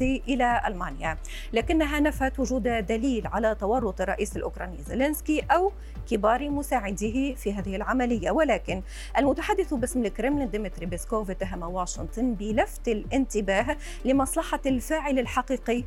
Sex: female